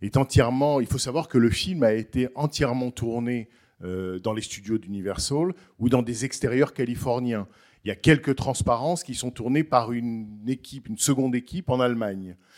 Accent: French